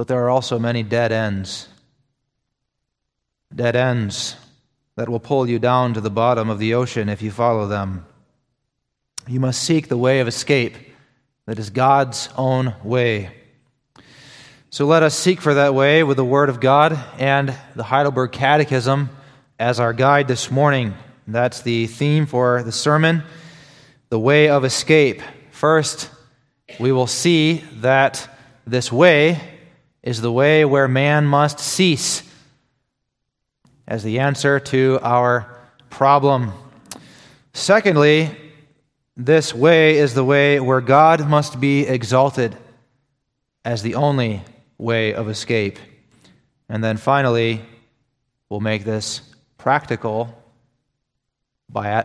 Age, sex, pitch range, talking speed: 30-49, male, 115-140 Hz, 130 wpm